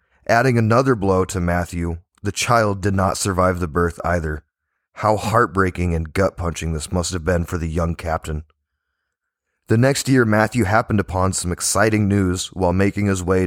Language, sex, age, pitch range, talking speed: English, male, 30-49, 90-110 Hz, 170 wpm